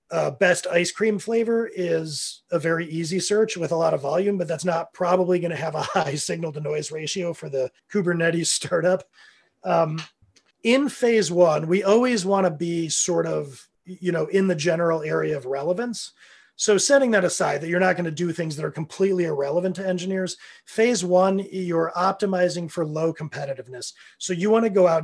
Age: 30-49